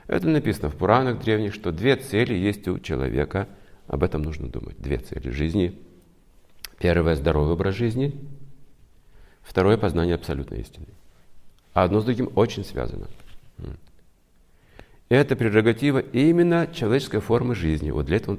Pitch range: 85-120 Hz